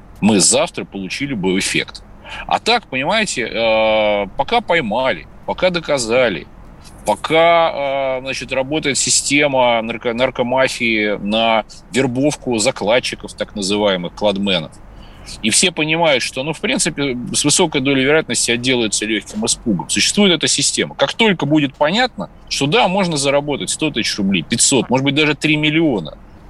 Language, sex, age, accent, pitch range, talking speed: Russian, male, 30-49, native, 105-160 Hz, 130 wpm